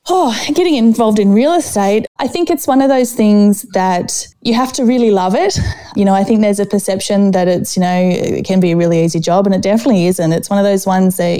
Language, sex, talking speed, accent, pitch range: English, female, 255 wpm, Australian, 175-205 Hz